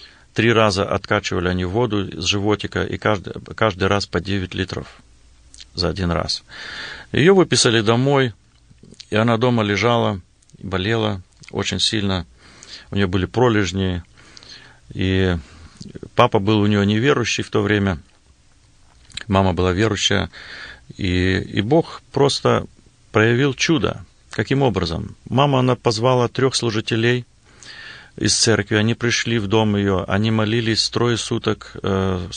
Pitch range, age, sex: 90-110 Hz, 40-59, male